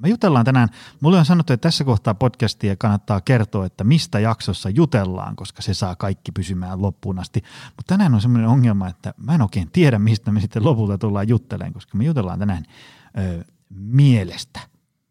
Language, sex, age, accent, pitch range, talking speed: Finnish, male, 30-49, native, 100-135 Hz, 180 wpm